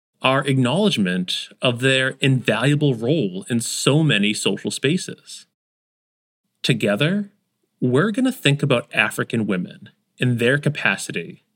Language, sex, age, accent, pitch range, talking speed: English, male, 30-49, American, 125-185 Hz, 115 wpm